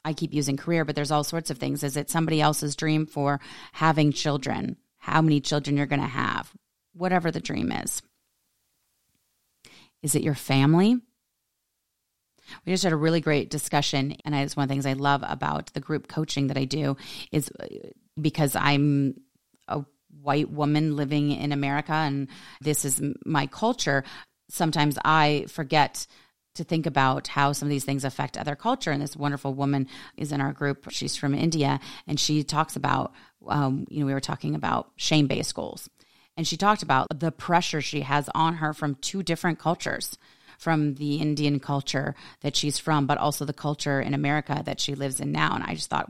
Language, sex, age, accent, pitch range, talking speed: English, female, 30-49, American, 140-155 Hz, 185 wpm